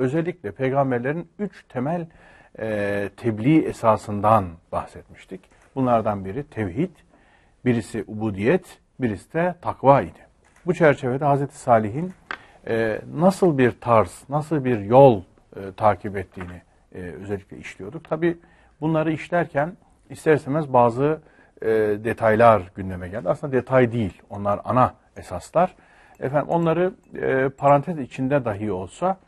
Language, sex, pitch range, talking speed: Turkish, male, 105-145 Hz, 115 wpm